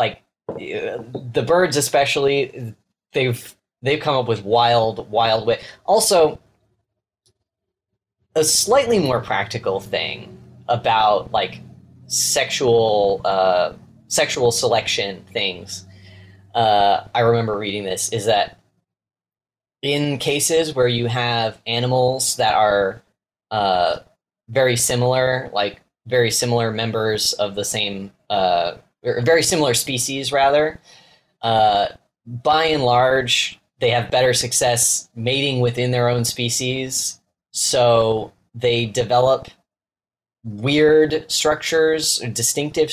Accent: American